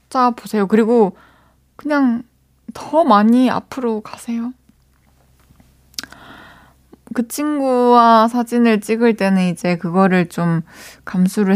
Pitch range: 170-235 Hz